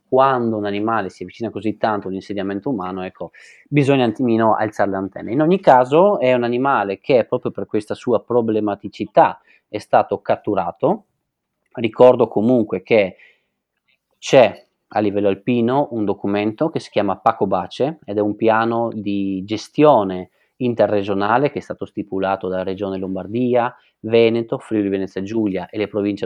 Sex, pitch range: male, 100-115 Hz